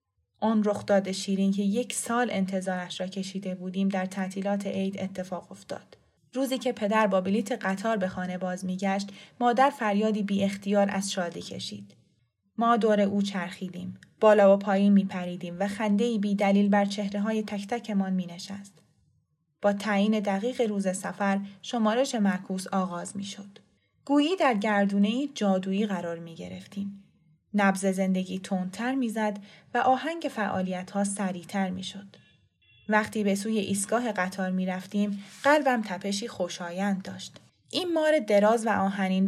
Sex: female